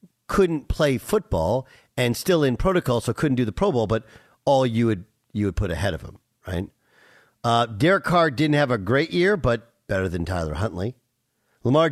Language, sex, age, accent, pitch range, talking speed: English, male, 50-69, American, 120-170 Hz, 190 wpm